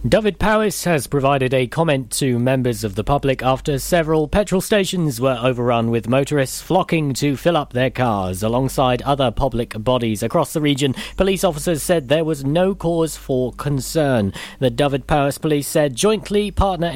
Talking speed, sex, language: 170 wpm, male, English